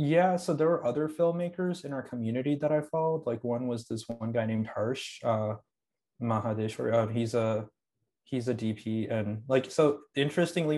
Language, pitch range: Telugu, 110-125 Hz